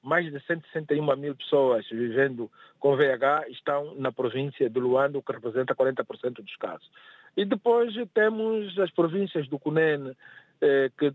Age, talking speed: 50-69, 145 wpm